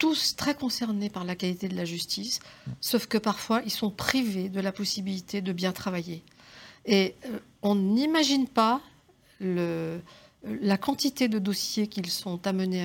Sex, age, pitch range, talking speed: female, 50-69, 175-215 Hz, 160 wpm